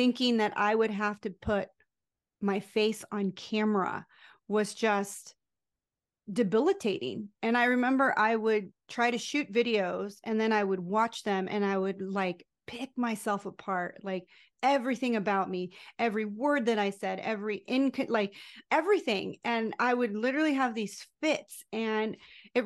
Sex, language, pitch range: female, English, 205-245 Hz